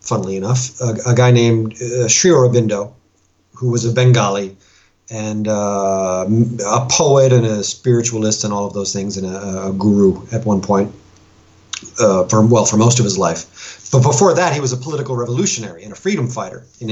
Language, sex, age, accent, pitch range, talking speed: English, male, 40-59, American, 100-130 Hz, 190 wpm